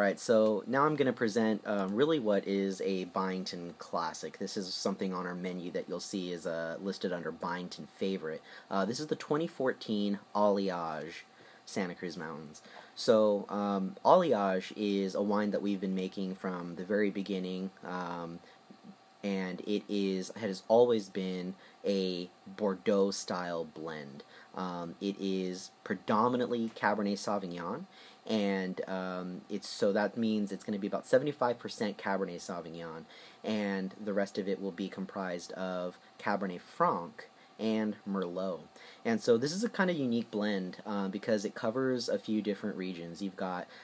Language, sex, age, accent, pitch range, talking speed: English, male, 30-49, American, 90-105 Hz, 155 wpm